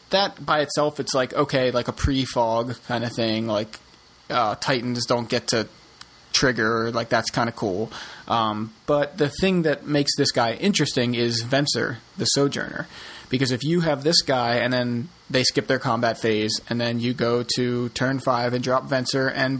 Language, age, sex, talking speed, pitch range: English, 30-49, male, 185 wpm, 120-140 Hz